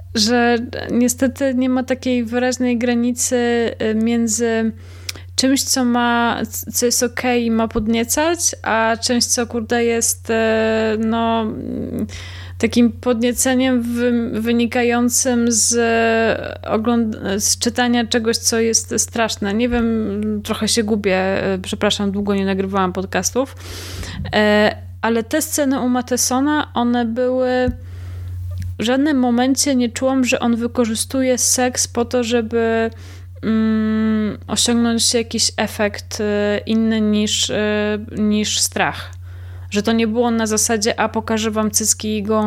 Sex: female